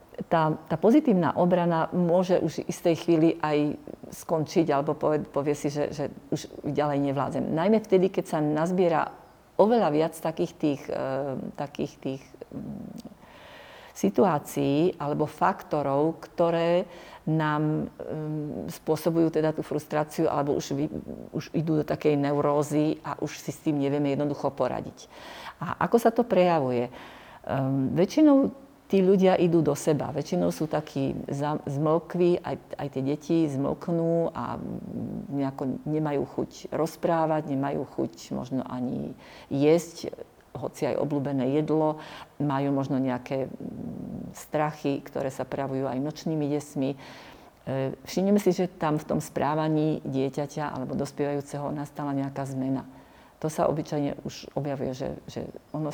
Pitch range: 140-165 Hz